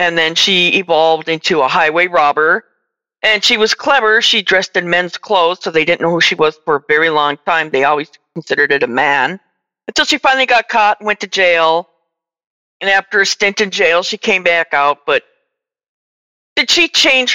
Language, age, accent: English, 40-59, American